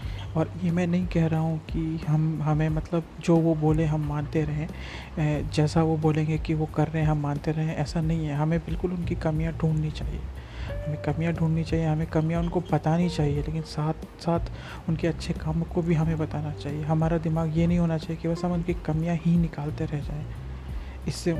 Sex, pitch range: male, 150-165 Hz